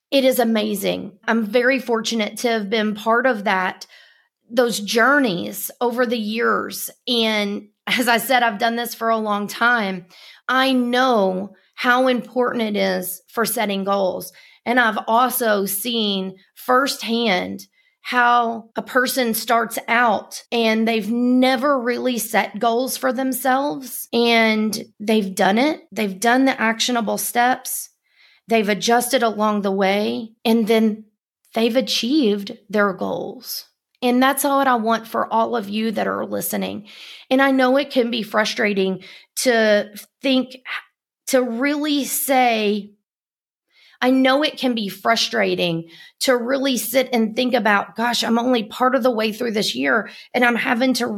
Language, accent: English, American